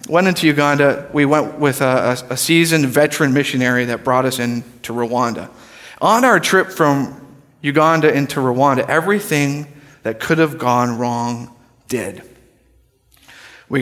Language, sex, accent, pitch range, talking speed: English, male, American, 130-165 Hz, 140 wpm